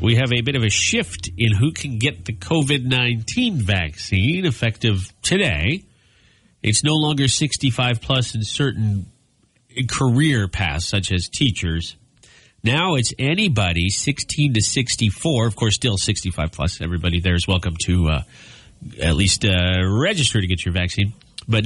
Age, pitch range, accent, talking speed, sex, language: 40-59, 100-135 Hz, American, 145 wpm, male, English